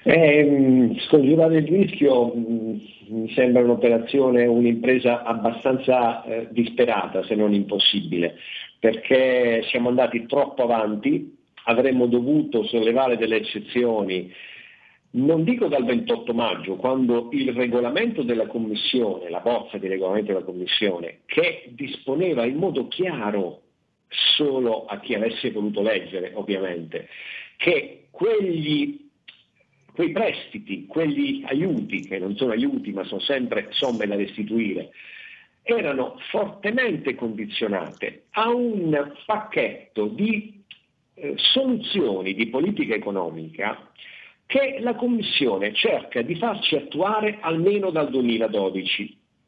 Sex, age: male, 50-69